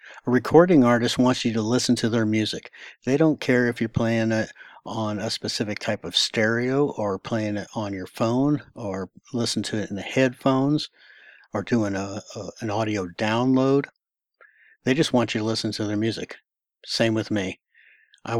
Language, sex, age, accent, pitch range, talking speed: English, male, 60-79, American, 110-130 Hz, 175 wpm